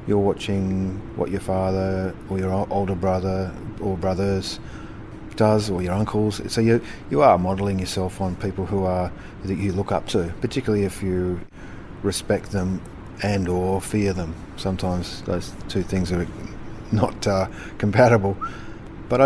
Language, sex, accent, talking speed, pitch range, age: English, male, Australian, 150 wpm, 95-110 Hz, 30-49